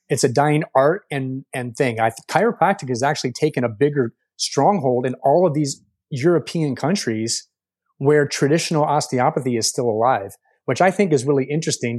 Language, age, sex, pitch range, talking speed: English, 30-49, male, 125-155 Hz, 170 wpm